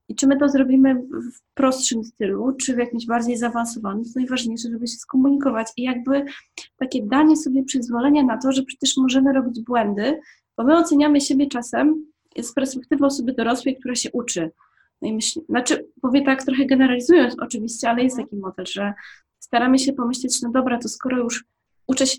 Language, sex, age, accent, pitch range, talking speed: Polish, female, 20-39, native, 240-275 Hz, 180 wpm